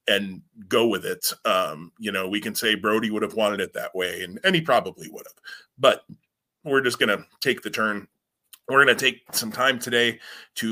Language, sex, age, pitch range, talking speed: English, male, 30-49, 115-145 Hz, 220 wpm